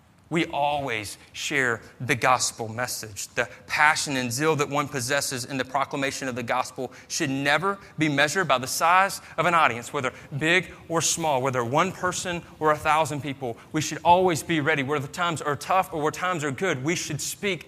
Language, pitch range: English, 115-150 Hz